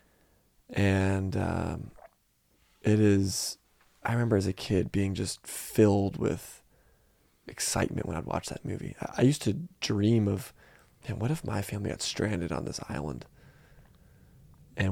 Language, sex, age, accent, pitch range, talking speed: English, male, 20-39, American, 100-125 Hz, 145 wpm